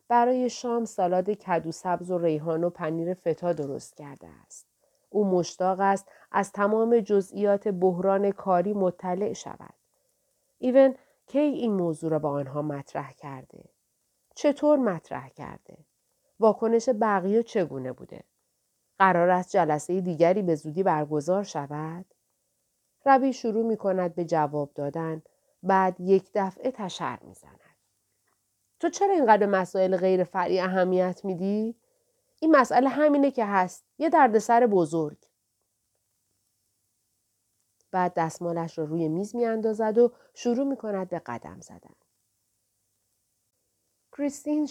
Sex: female